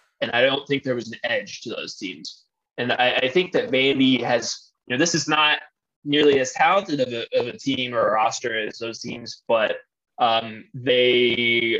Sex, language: male, English